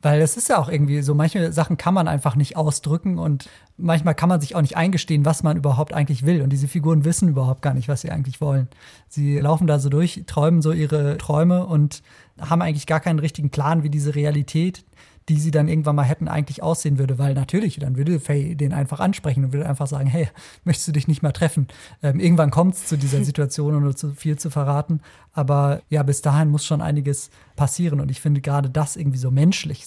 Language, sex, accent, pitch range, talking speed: German, male, German, 145-165 Hz, 230 wpm